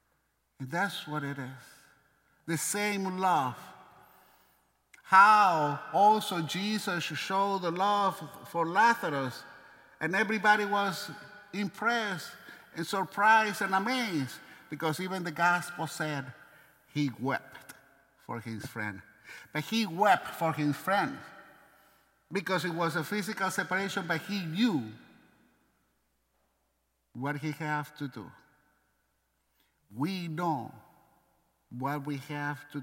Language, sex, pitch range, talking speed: English, male, 145-205 Hz, 110 wpm